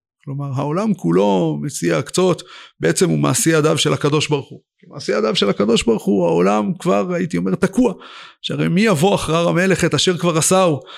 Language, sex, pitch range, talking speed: Hebrew, male, 140-185 Hz, 185 wpm